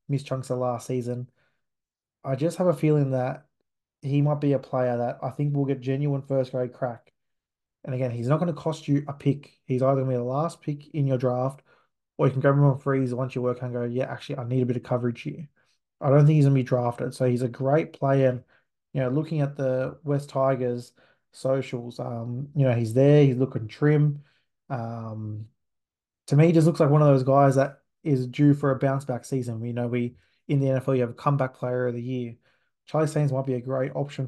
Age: 20-39